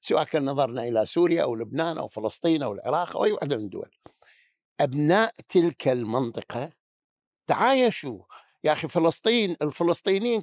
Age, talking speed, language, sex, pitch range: 60-79, 140 wpm, Arabic, male, 140-185 Hz